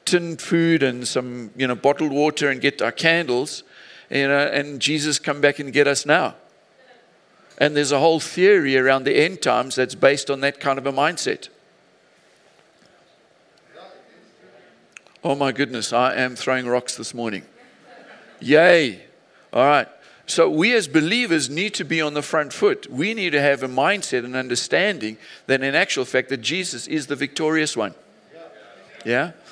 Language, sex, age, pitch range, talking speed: English, male, 50-69, 135-175 Hz, 165 wpm